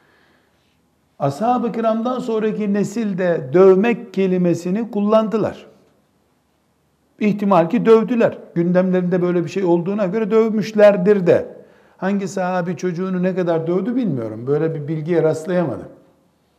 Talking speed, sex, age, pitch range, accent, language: 110 wpm, male, 60-79, 150-200 Hz, native, Turkish